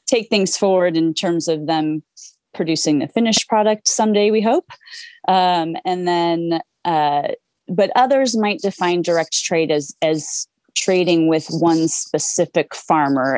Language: English